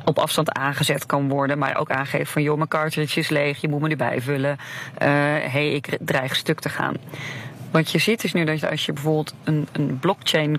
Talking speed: 220 wpm